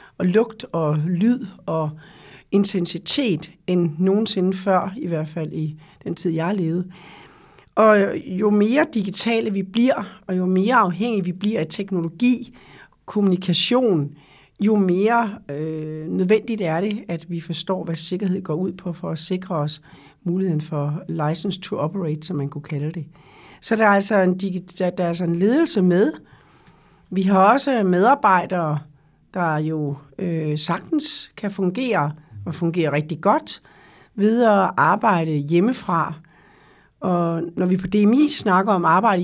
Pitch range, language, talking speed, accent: 165-210 Hz, Danish, 150 wpm, native